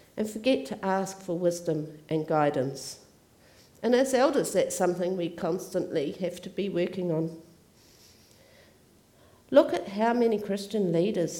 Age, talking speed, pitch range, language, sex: 50-69, 135 wpm, 165-210 Hz, English, female